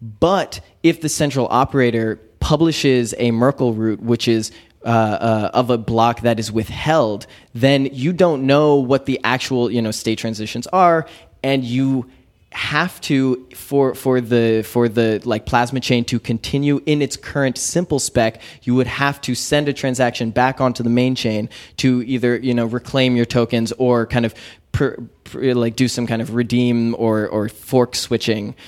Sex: male